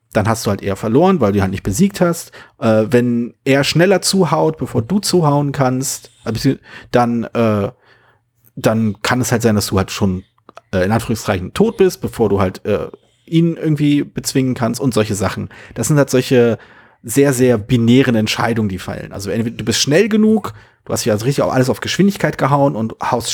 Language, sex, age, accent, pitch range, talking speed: German, male, 40-59, German, 110-140 Hz, 195 wpm